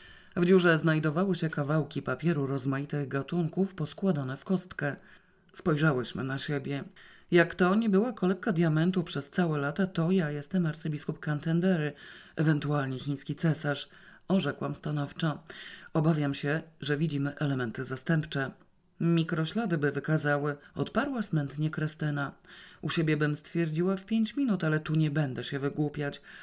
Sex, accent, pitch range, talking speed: female, native, 145-180 Hz, 130 wpm